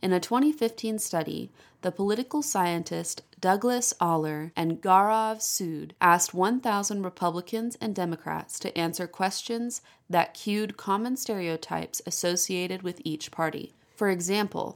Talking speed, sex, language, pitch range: 120 wpm, female, English, 165-220 Hz